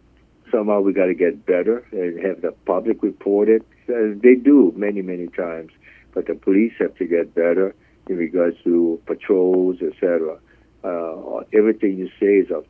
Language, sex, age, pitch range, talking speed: English, male, 60-79, 85-105 Hz, 170 wpm